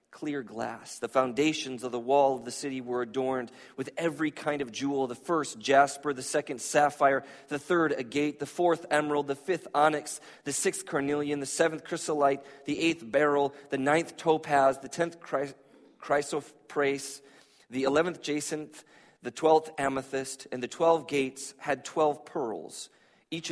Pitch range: 130-155 Hz